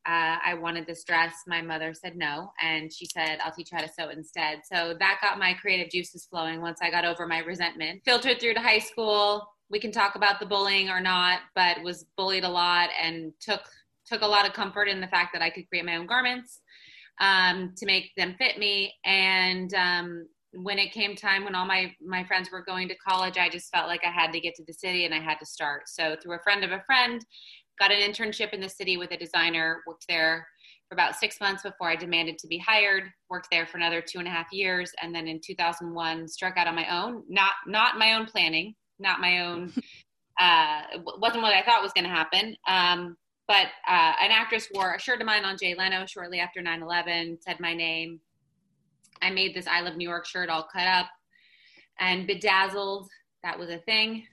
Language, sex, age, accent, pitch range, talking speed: English, female, 20-39, American, 170-200 Hz, 225 wpm